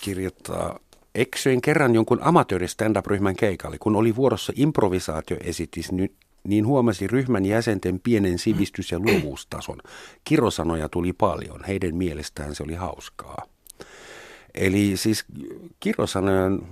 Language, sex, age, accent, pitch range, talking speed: Finnish, male, 50-69, native, 80-100 Hz, 105 wpm